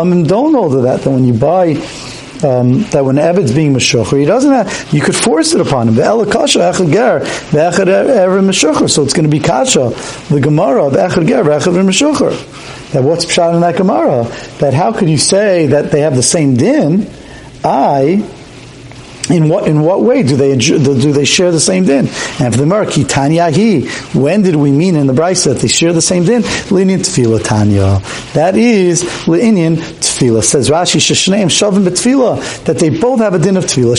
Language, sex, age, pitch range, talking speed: English, male, 50-69, 140-190 Hz, 185 wpm